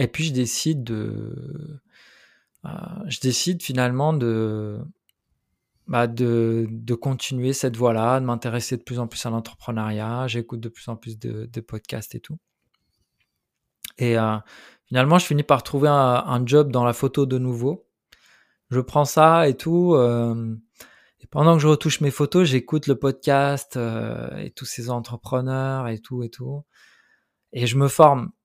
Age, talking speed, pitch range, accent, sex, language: 20-39, 165 wpm, 120-150 Hz, French, male, French